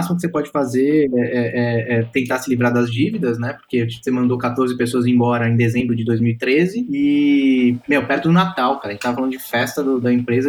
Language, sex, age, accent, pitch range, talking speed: Portuguese, male, 20-39, Brazilian, 125-175 Hz, 230 wpm